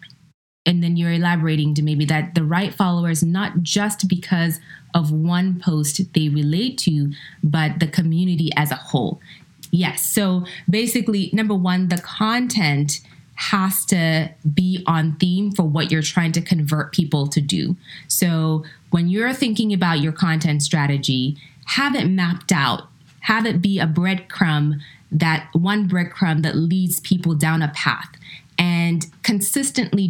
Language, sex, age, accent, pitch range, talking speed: English, female, 20-39, American, 160-190 Hz, 150 wpm